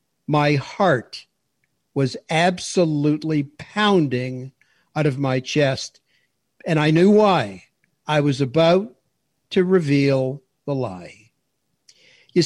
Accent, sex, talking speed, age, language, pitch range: American, male, 100 wpm, 60-79, English, 140-175 Hz